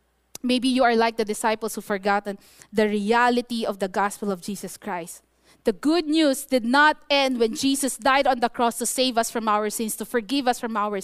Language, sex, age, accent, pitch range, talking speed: English, female, 20-39, Filipino, 200-260 Hz, 210 wpm